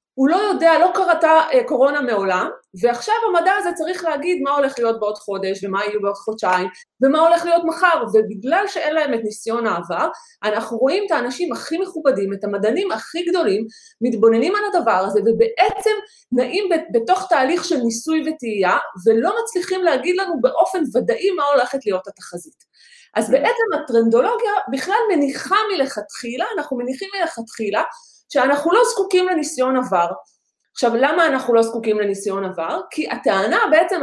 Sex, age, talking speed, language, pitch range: female, 30-49, 150 wpm, Hebrew, 225-350 Hz